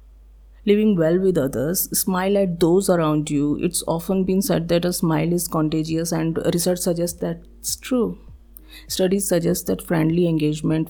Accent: native